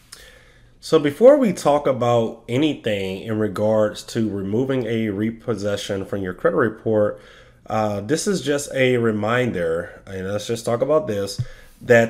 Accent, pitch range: American, 105-130 Hz